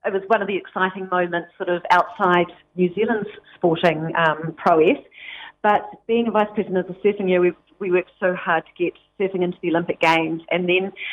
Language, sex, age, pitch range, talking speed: English, female, 40-59, 170-195 Hz, 205 wpm